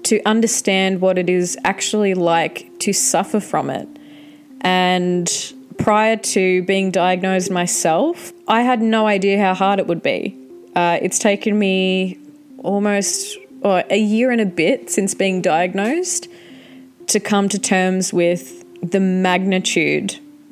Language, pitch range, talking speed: English, 180-235 Hz, 135 wpm